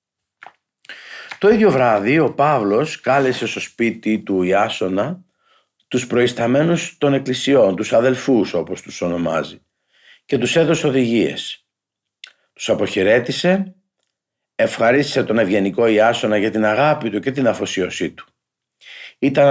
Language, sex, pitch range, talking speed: Greek, male, 110-155 Hz, 115 wpm